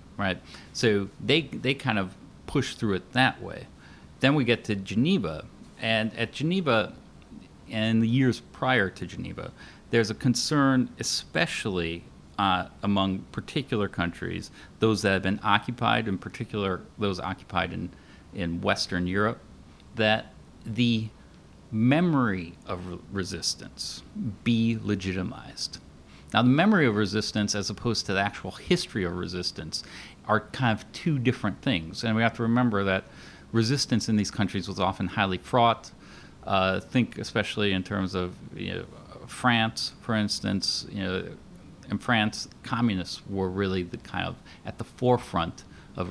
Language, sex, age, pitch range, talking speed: English, male, 40-59, 90-115 Hz, 145 wpm